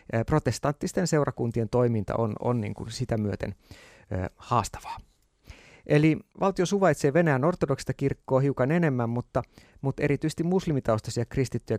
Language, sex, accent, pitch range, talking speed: Finnish, male, native, 110-140 Hz, 115 wpm